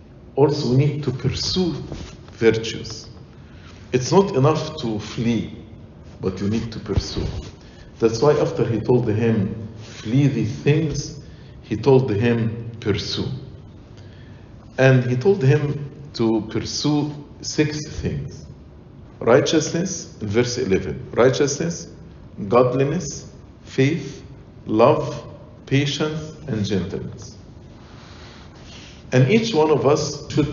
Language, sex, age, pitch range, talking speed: English, male, 50-69, 115-150 Hz, 100 wpm